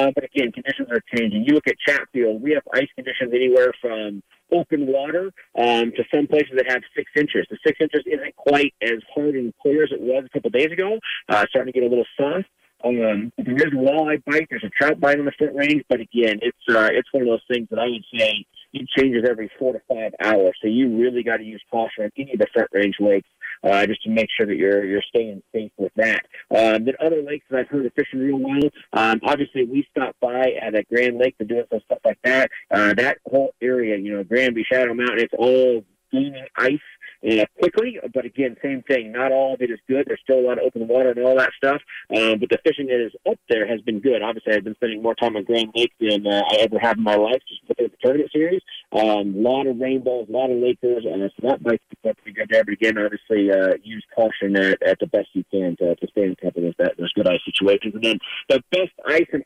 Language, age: English, 40-59